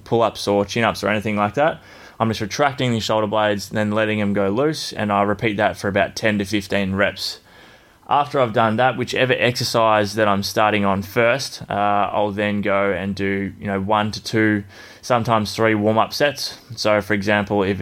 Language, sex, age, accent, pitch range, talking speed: English, male, 20-39, Australian, 100-115 Hz, 195 wpm